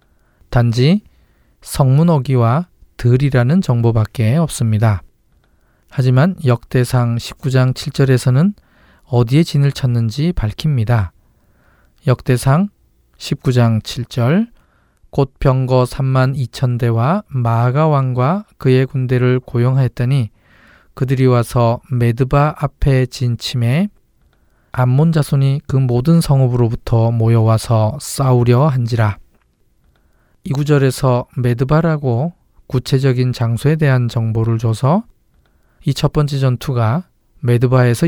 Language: Korean